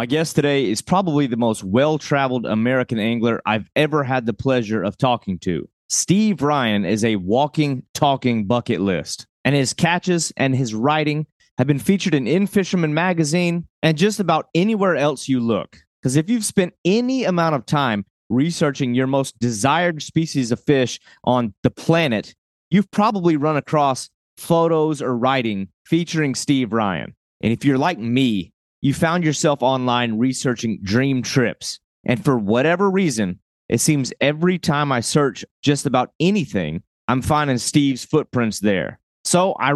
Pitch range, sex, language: 120-160 Hz, male, English